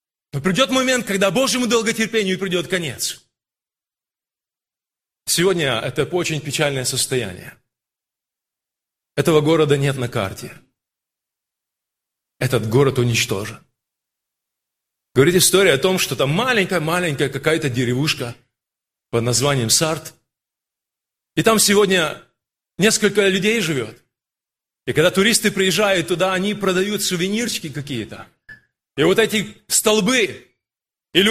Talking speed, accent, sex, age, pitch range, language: 100 wpm, native, male, 30-49, 140-225 Hz, Russian